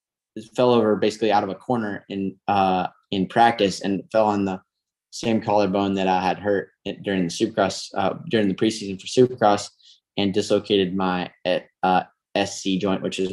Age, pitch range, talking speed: 10-29, 95-105 Hz, 170 wpm